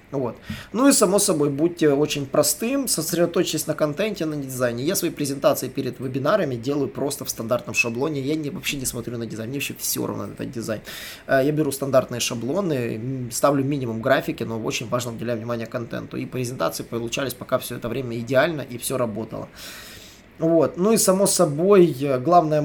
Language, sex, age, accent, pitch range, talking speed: Russian, male, 20-39, native, 125-155 Hz, 180 wpm